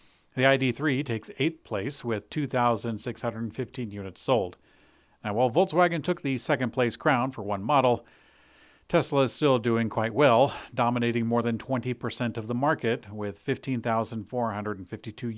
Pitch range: 110-130 Hz